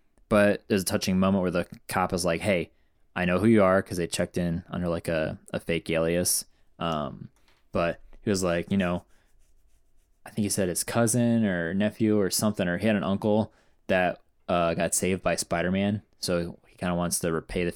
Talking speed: 210 wpm